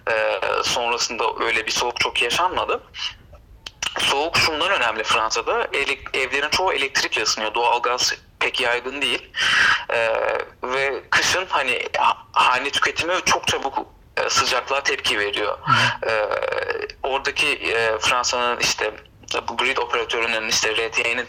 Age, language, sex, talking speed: 40-59, Turkish, male, 105 wpm